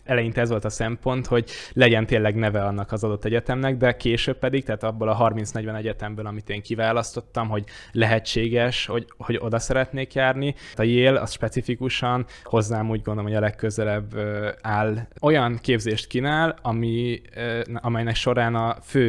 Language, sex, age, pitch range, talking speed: Hungarian, male, 10-29, 105-115 Hz, 155 wpm